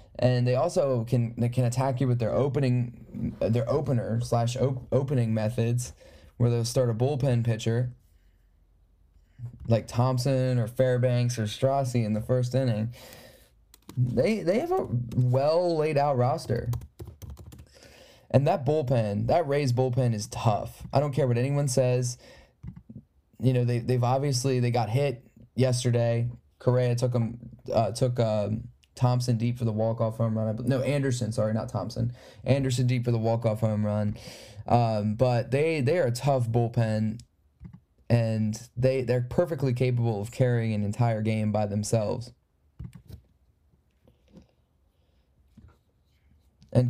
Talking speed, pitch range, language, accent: 140 wpm, 110-130 Hz, English, American